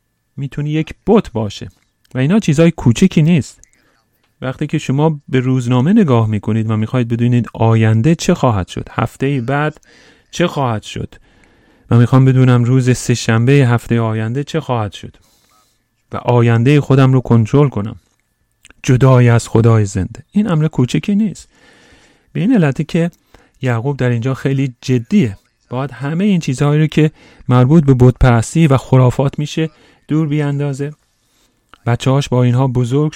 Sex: male